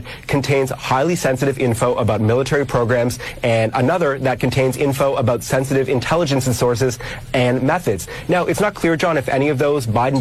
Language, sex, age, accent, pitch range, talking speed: English, male, 30-49, American, 120-140 Hz, 170 wpm